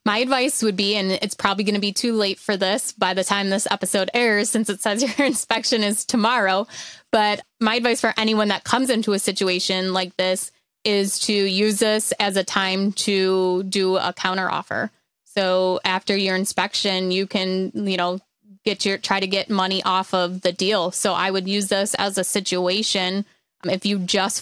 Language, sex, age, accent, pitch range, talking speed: English, female, 20-39, American, 185-215 Hz, 195 wpm